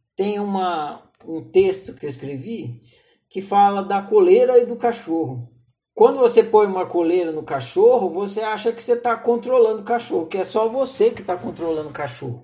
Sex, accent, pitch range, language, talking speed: male, Brazilian, 155-235 Hz, Portuguese, 185 wpm